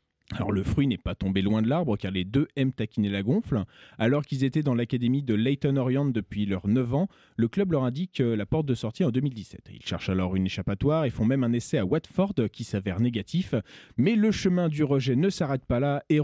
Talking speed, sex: 230 wpm, male